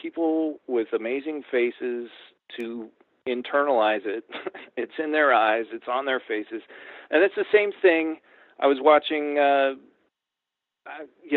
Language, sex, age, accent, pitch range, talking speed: English, male, 40-59, American, 115-160 Hz, 130 wpm